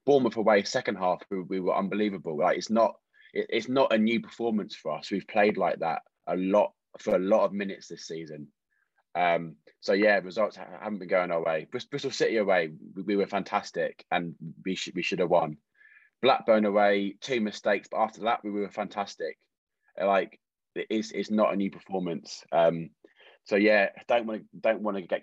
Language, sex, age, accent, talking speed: English, male, 20-39, British, 195 wpm